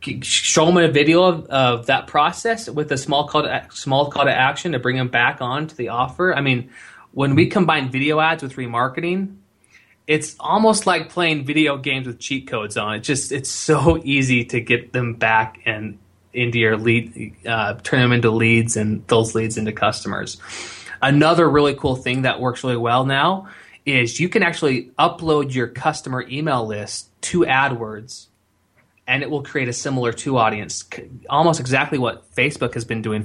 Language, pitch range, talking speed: English, 115-140 Hz, 185 wpm